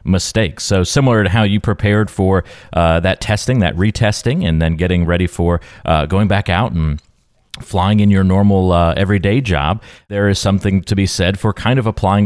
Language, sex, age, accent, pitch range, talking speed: English, male, 30-49, American, 90-110 Hz, 195 wpm